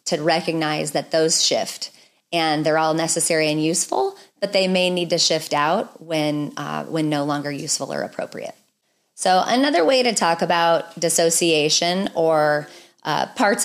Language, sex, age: English, female, 30-49